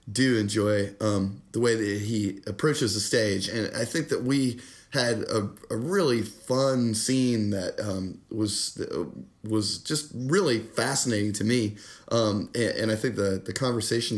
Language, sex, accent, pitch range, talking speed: English, male, American, 100-125 Hz, 160 wpm